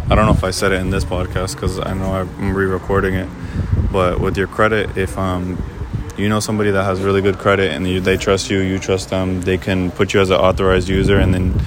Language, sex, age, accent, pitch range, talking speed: English, male, 20-39, American, 90-100 Hz, 240 wpm